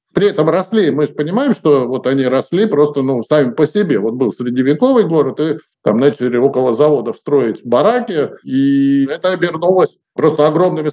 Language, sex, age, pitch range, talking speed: Russian, male, 50-69, 140-200 Hz, 170 wpm